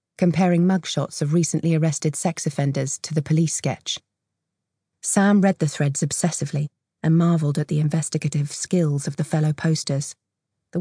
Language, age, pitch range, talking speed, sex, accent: English, 30-49, 150-175 Hz, 150 wpm, female, British